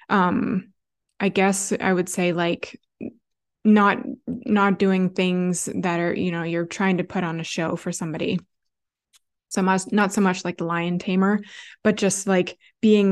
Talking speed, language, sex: 170 wpm, English, female